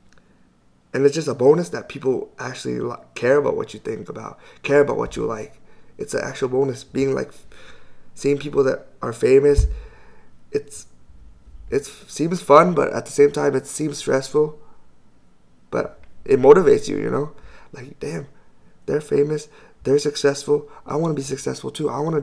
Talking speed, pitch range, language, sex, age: 170 wpm, 130-150 Hz, English, male, 20-39